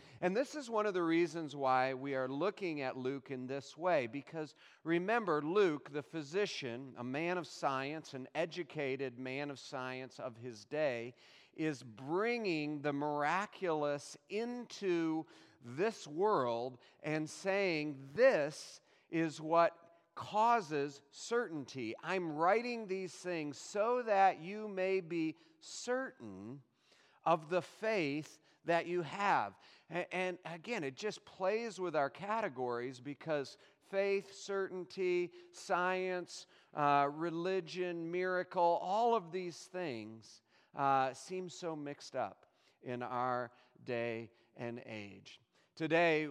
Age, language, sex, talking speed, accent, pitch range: 40-59, English, male, 120 wpm, American, 130-180 Hz